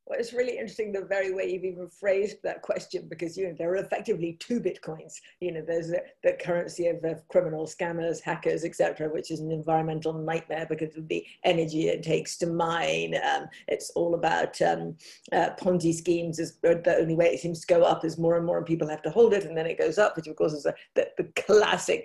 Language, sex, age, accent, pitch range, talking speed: English, female, 50-69, British, 165-230 Hz, 225 wpm